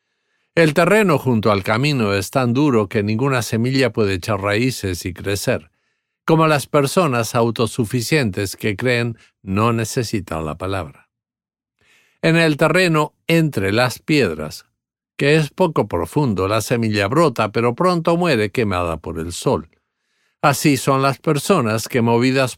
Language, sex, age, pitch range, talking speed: English, male, 50-69, 110-150 Hz, 140 wpm